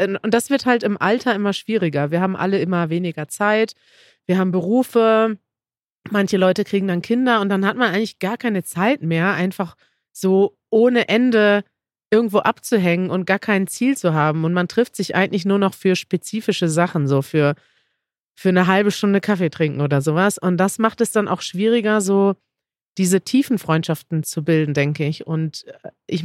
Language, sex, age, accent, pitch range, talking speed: German, female, 30-49, German, 175-215 Hz, 185 wpm